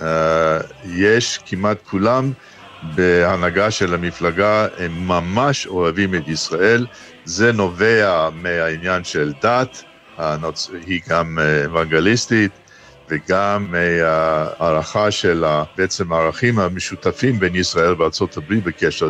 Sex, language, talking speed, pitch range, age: male, Hebrew, 105 wpm, 85-105 Hz, 60-79